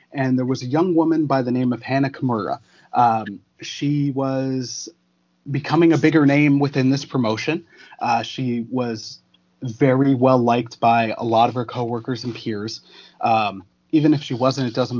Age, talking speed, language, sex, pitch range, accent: 30-49, 170 wpm, English, male, 115-145 Hz, American